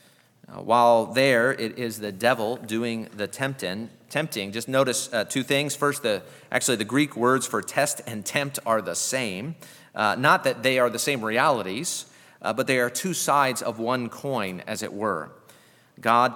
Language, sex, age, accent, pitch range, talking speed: English, male, 40-59, American, 120-145 Hz, 175 wpm